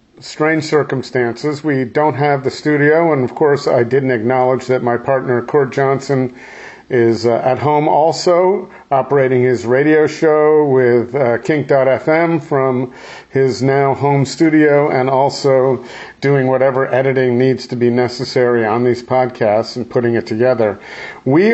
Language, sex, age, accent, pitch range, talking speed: English, male, 50-69, American, 125-150 Hz, 145 wpm